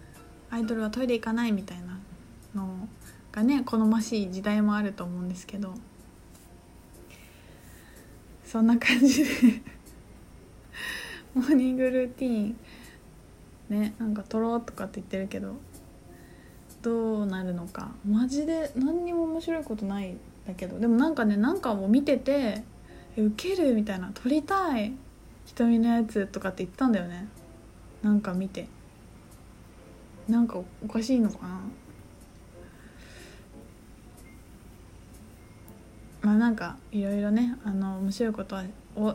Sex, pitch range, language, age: female, 190-260 Hz, Japanese, 20-39